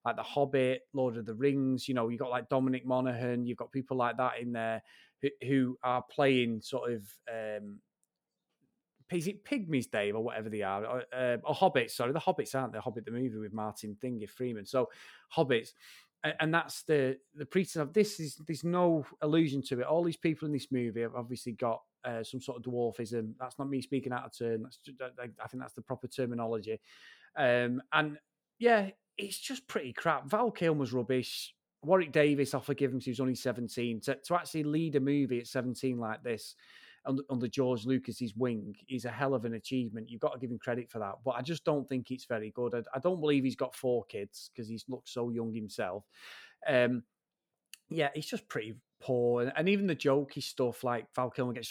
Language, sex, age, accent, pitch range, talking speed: English, male, 30-49, British, 120-140 Hz, 215 wpm